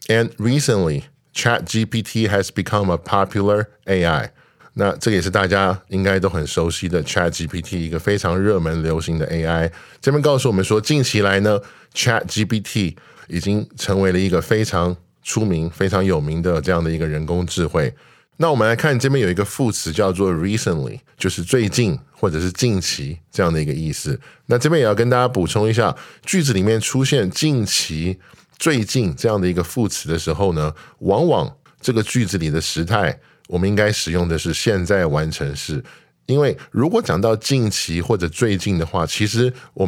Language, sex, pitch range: Chinese, male, 85-110 Hz